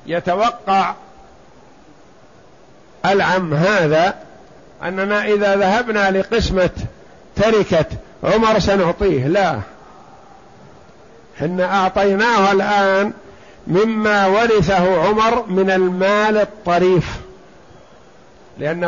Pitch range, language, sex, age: 175-210 Hz, Arabic, male, 50-69